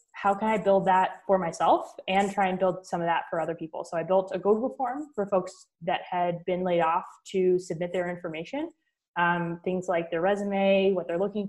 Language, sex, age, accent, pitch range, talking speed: English, female, 20-39, American, 165-195 Hz, 220 wpm